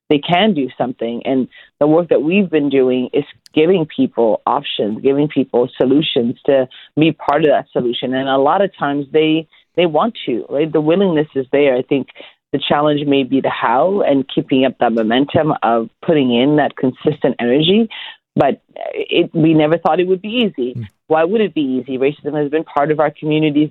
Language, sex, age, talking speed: English, female, 30-49, 200 wpm